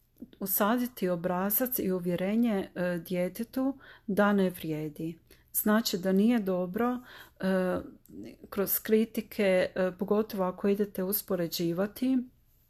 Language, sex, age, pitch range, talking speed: Croatian, female, 40-59, 185-220 Hz, 85 wpm